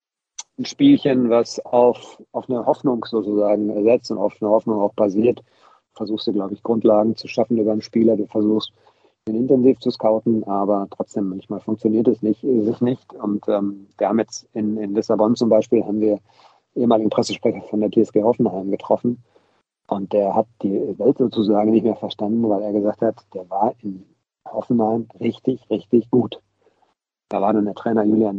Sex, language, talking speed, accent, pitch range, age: male, German, 180 wpm, German, 105-120 Hz, 40-59